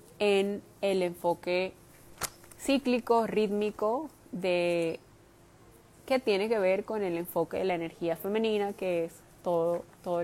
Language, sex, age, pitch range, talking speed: Spanish, female, 20-39, 180-205 Hz, 125 wpm